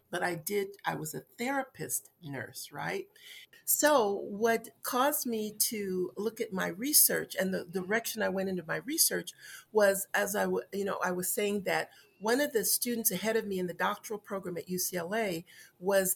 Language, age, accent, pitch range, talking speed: English, 50-69, American, 180-240 Hz, 185 wpm